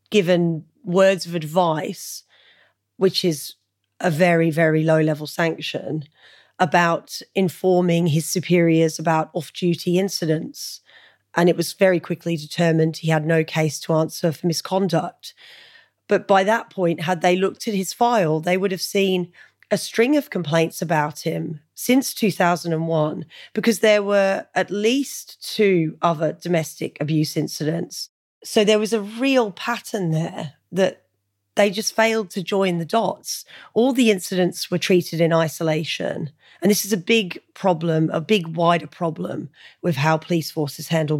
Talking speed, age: 145 wpm, 30-49